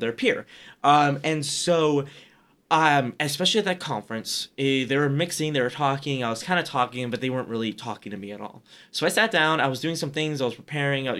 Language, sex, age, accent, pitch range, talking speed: English, male, 20-39, American, 120-155 Hz, 235 wpm